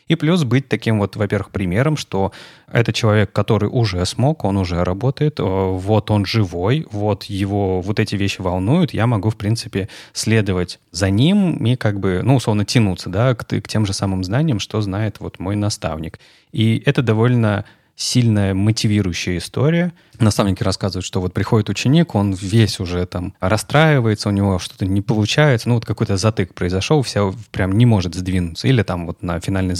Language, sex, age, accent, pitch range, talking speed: Russian, male, 30-49, native, 95-115 Hz, 175 wpm